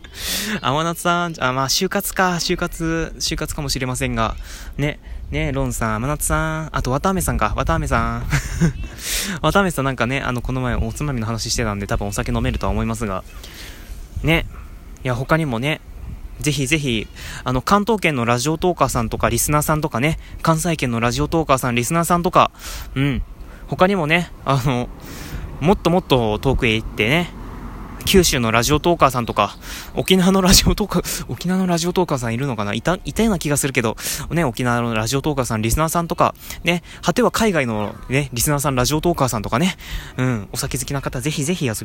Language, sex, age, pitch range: Japanese, male, 20-39, 120-170 Hz